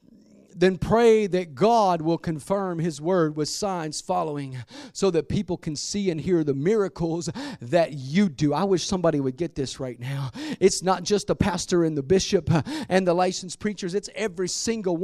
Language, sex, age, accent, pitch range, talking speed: English, male, 40-59, American, 170-225 Hz, 185 wpm